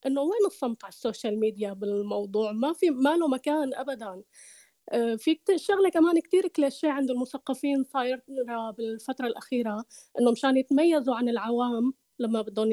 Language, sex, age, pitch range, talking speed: Arabic, female, 20-39, 225-285 Hz, 135 wpm